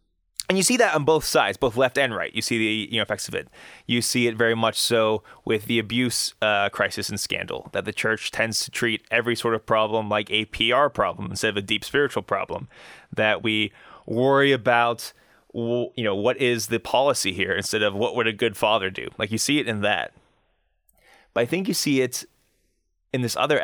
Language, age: English, 20-39